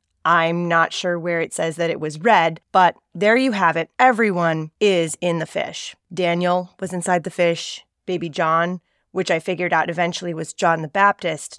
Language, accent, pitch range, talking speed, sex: English, American, 165-205 Hz, 185 wpm, female